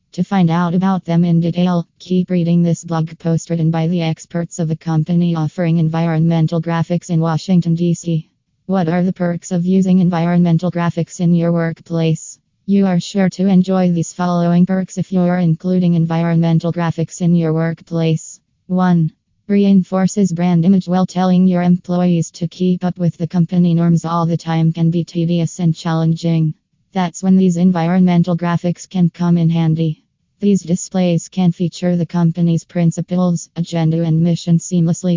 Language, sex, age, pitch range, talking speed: English, female, 20-39, 165-180 Hz, 165 wpm